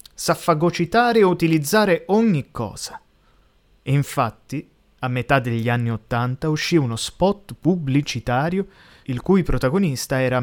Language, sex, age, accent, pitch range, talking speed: Italian, male, 30-49, native, 120-165 Hz, 115 wpm